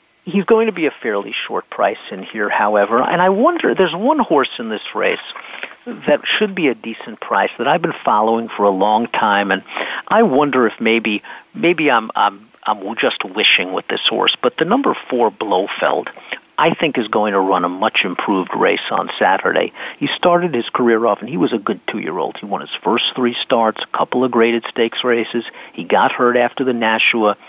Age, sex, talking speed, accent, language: 50-69, male, 205 wpm, American, English